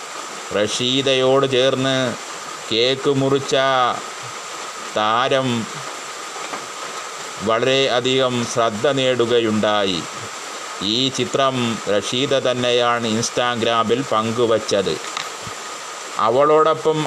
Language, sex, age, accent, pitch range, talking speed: Malayalam, male, 30-49, native, 120-145 Hz, 55 wpm